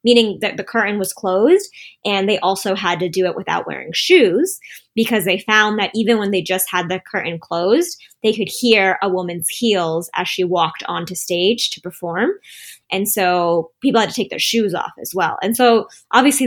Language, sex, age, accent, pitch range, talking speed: English, female, 10-29, American, 180-225 Hz, 200 wpm